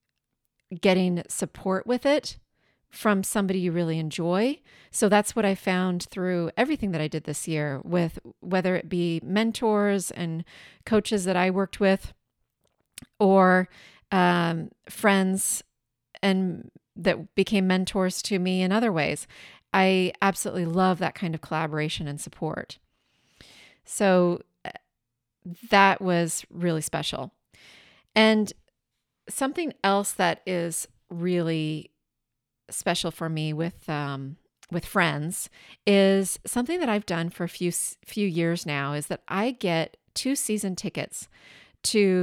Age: 30-49